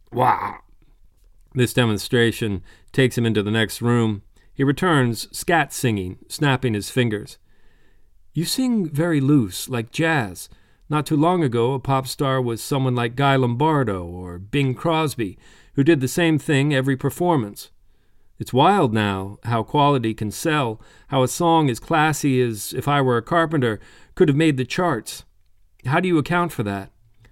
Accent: American